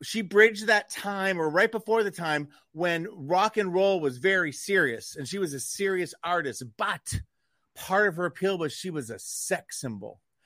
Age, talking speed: 40-59, 190 wpm